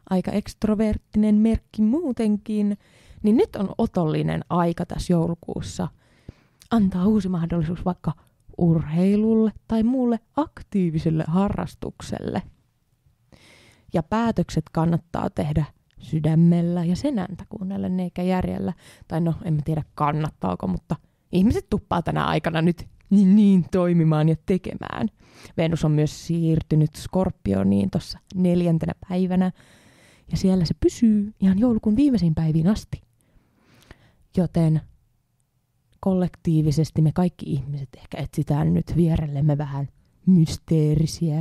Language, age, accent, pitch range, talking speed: Finnish, 20-39, native, 155-190 Hz, 105 wpm